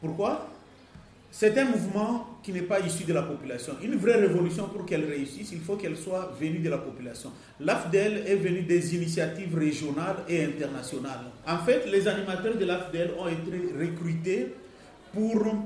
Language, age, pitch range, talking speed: French, 40-59, 160-205 Hz, 165 wpm